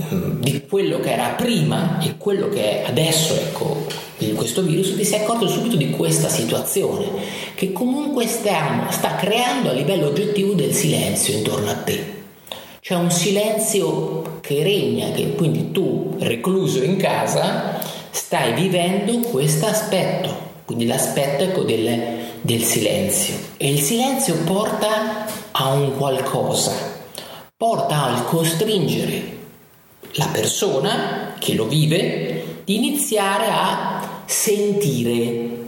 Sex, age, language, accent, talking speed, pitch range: male, 30-49, Italian, native, 125 wpm, 140-205 Hz